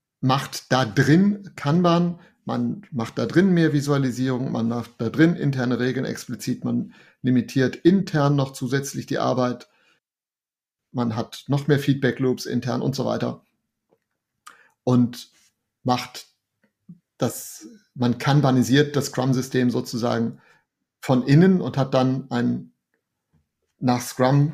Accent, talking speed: German, 120 wpm